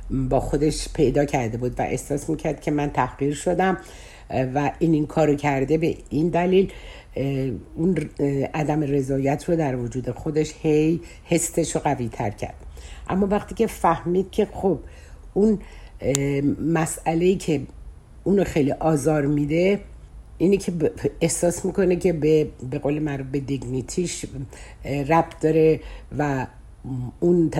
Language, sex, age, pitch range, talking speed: Persian, female, 60-79, 130-165 Hz, 135 wpm